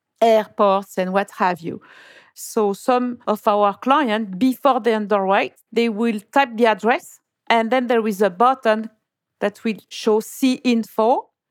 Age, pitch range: 50-69, 205-235 Hz